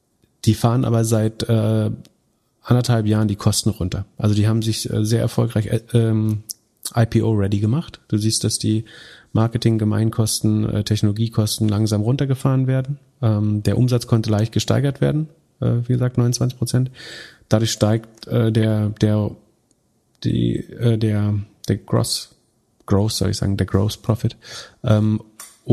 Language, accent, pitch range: German, German, 105-120 Hz